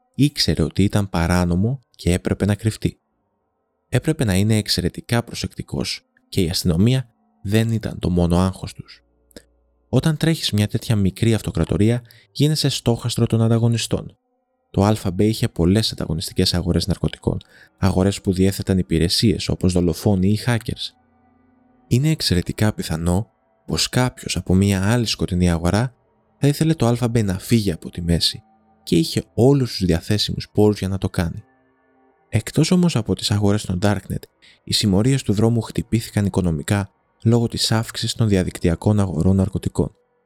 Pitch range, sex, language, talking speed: 95-120 Hz, male, Greek, 140 wpm